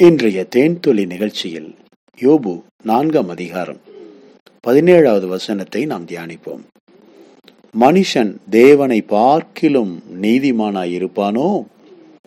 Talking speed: 75 wpm